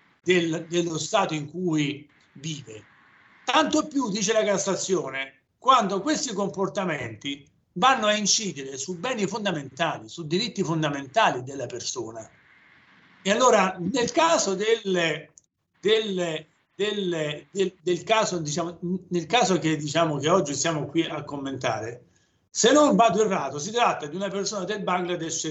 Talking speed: 130 wpm